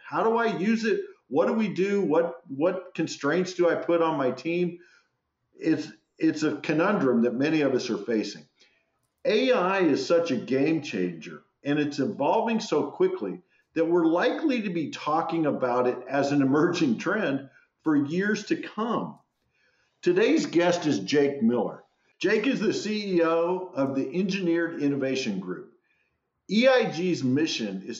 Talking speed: 155 wpm